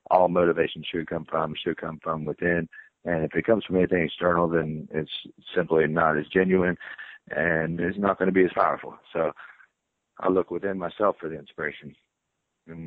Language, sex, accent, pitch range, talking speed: English, male, American, 85-100 Hz, 175 wpm